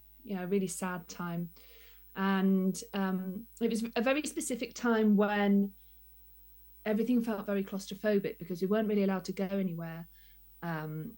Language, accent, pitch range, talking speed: English, British, 185-210 Hz, 145 wpm